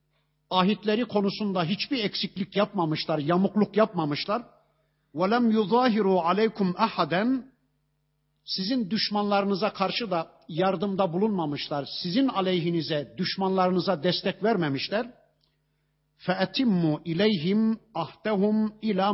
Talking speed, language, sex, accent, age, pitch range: 80 wpm, Turkish, male, native, 50-69, 150-200 Hz